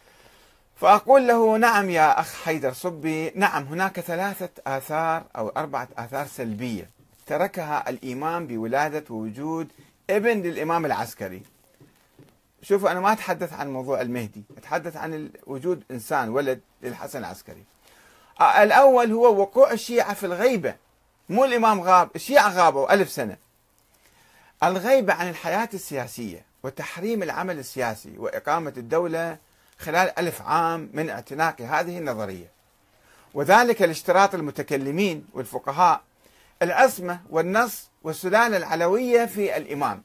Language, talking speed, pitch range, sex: Arabic, 110 wpm, 135-200 Hz, male